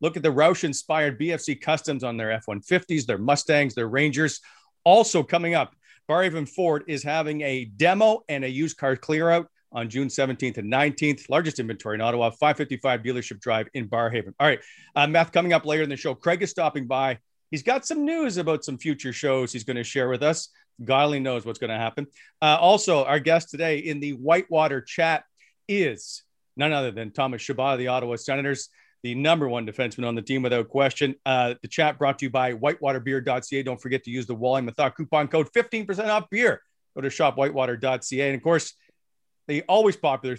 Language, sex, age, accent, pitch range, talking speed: English, male, 40-59, American, 130-165 Hz, 200 wpm